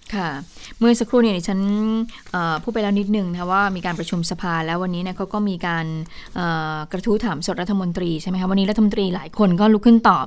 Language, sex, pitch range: Thai, female, 180-220 Hz